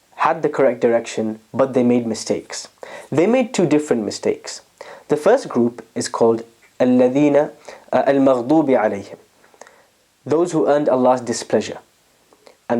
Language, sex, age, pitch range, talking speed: English, male, 20-39, 115-150 Hz, 120 wpm